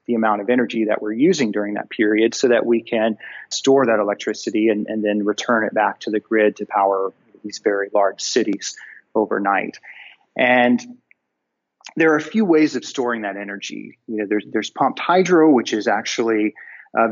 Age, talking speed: 30-49, 185 wpm